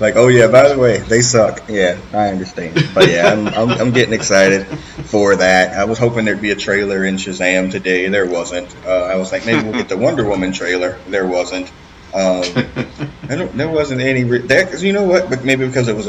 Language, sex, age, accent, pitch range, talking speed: English, male, 30-49, American, 95-115 Hz, 230 wpm